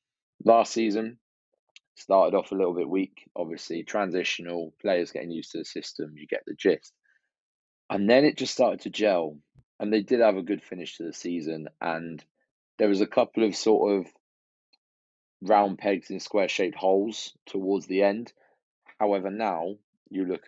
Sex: male